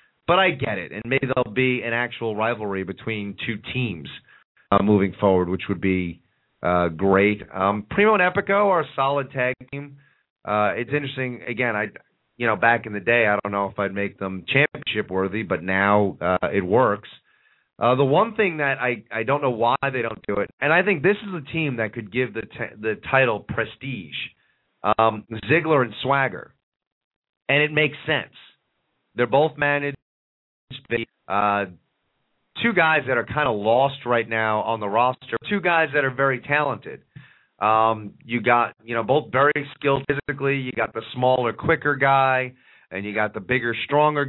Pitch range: 105-140 Hz